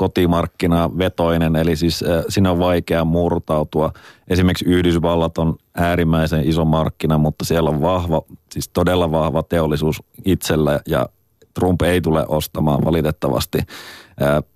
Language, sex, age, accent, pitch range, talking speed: Finnish, male, 30-49, native, 80-90 Hz, 130 wpm